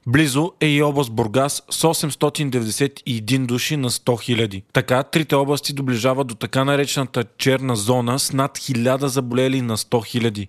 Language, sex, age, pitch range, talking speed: Bulgarian, male, 20-39, 120-140 Hz, 150 wpm